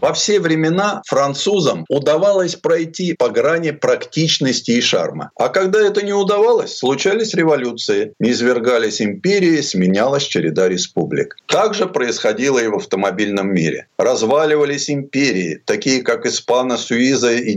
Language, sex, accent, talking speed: Russian, male, native, 125 wpm